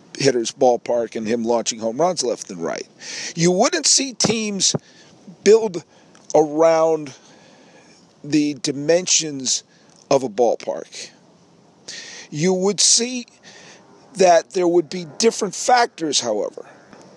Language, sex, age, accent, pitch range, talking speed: English, male, 50-69, American, 150-205 Hz, 110 wpm